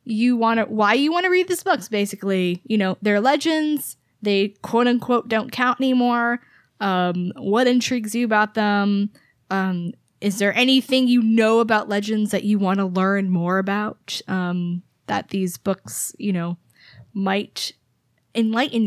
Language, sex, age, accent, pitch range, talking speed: English, female, 10-29, American, 195-235 Hz, 160 wpm